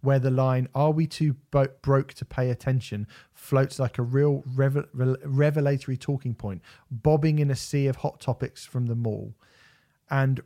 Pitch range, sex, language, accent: 120-145 Hz, male, English, British